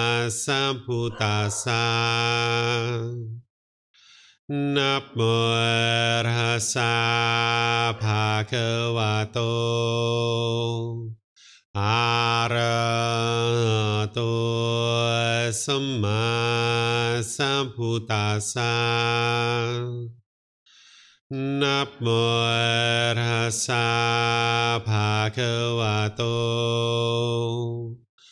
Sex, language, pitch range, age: male, English, 115-120 Hz, 40-59